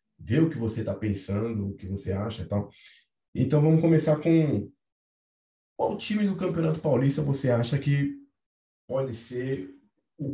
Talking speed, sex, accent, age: 155 wpm, male, Brazilian, 20-39